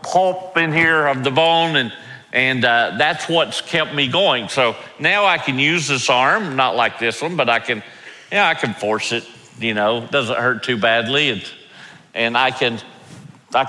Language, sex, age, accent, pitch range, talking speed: English, male, 40-59, American, 125-185 Hz, 195 wpm